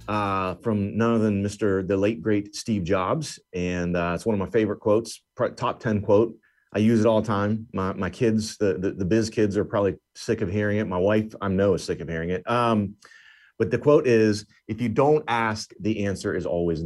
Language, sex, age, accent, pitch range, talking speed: English, male, 30-49, American, 100-125 Hz, 230 wpm